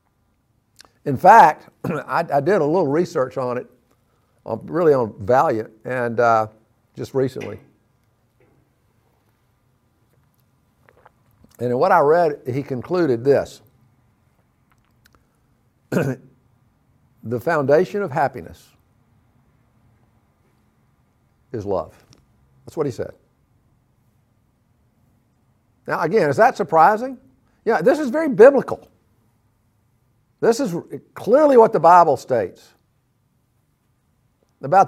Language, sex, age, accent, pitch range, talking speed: English, male, 50-69, American, 115-160 Hz, 90 wpm